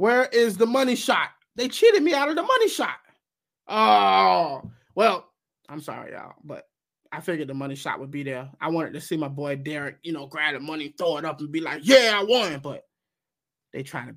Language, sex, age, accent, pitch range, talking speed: English, male, 20-39, American, 150-215 Hz, 220 wpm